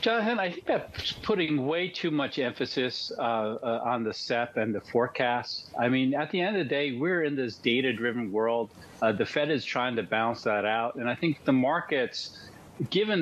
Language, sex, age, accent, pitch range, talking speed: English, male, 40-59, American, 115-150 Hz, 205 wpm